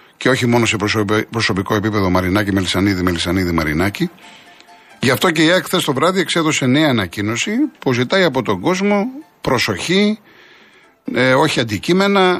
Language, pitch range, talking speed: Greek, 125-200 Hz, 140 wpm